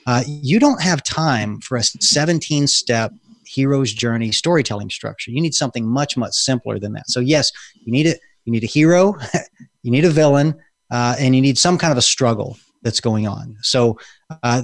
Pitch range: 120-145 Hz